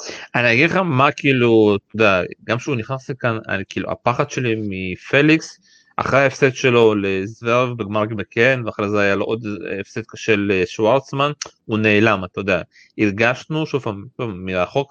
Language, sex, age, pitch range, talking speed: Hebrew, male, 30-49, 110-150 Hz, 150 wpm